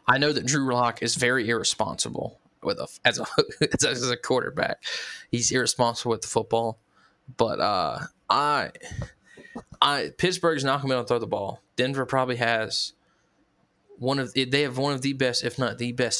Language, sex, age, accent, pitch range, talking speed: English, male, 20-39, American, 115-130 Hz, 180 wpm